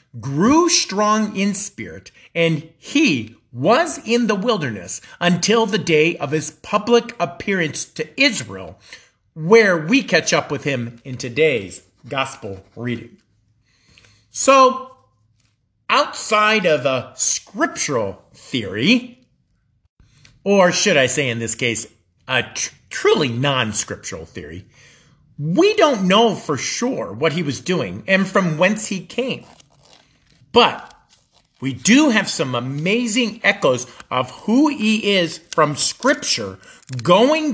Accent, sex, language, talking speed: American, male, English, 120 wpm